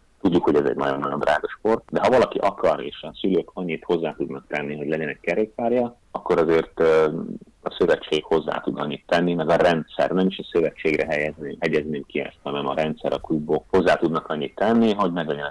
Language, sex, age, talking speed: Hungarian, male, 30-49, 200 wpm